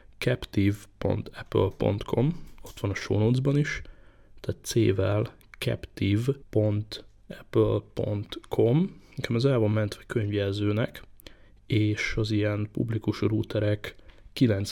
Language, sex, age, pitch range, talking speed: Hungarian, male, 20-39, 100-115 Hz, 90 wpm